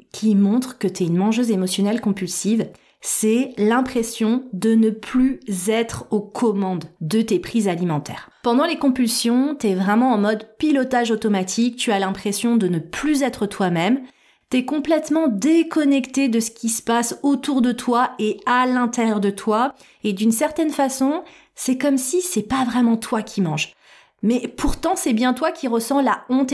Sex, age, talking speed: female, 30-49, 170 wpm